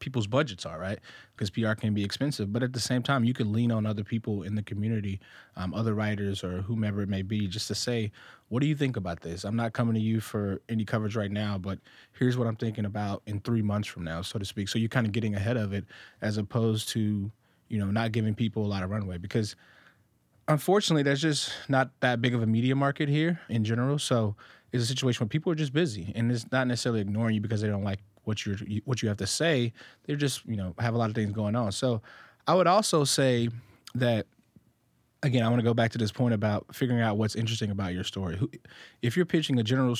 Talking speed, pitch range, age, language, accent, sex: 245 wpm, 105-125 Hz, 20-39, English, American, male